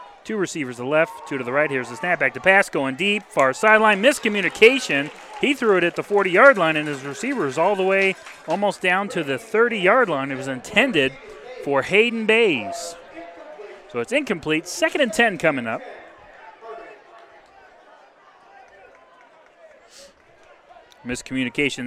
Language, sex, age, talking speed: English, male, 30-49, 150 wpm